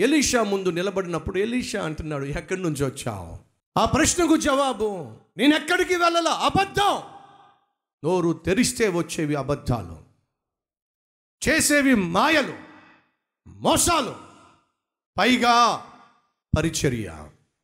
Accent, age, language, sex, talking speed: native, 50-69, Telugu, male, 80 wpm